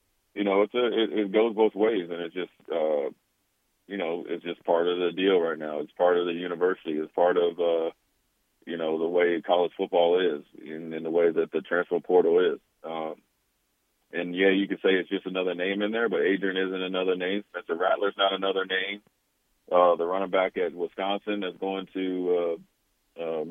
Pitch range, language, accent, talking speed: 90-100 Hz, English, American, 205 wpm